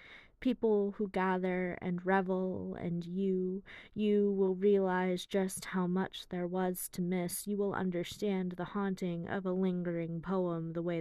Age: 20-39